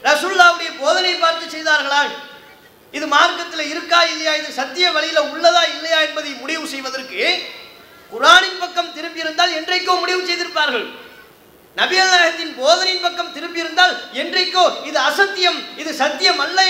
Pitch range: 290-345 Hz